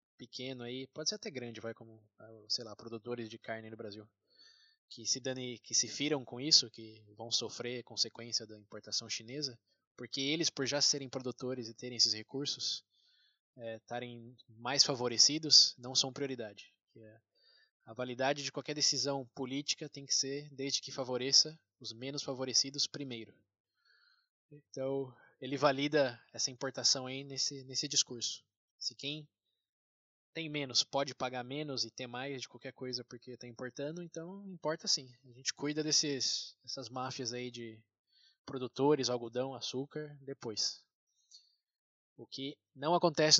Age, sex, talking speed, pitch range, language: 20-39, male, 150 wpm, 115-145 Hz, Portuguese